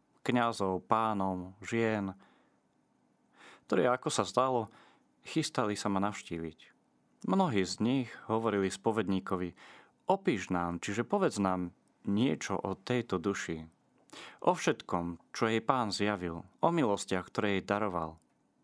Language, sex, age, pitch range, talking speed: Slovak, male, 30-49, 90-110 Hz, 115 wpm